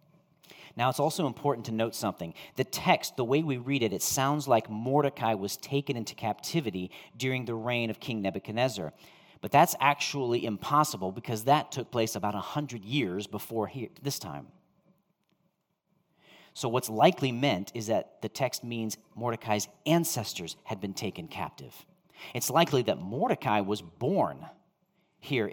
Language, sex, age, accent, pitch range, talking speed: English, male, 40-59, American, 110-155 Hz, 155 wpm